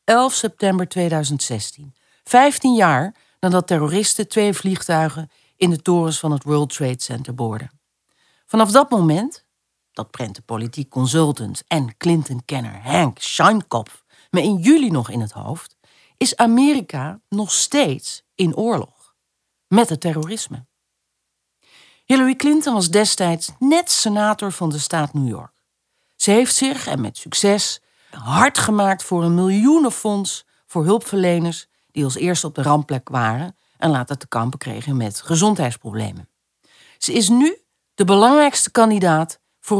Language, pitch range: Dutch, 140-225 Hz